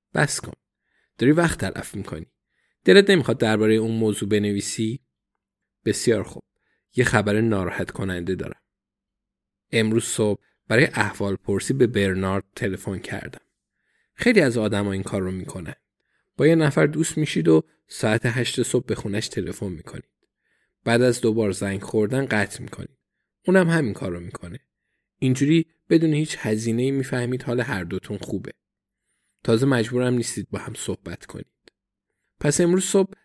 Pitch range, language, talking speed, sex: 105-135 Hz, Persian, 140 wpm, male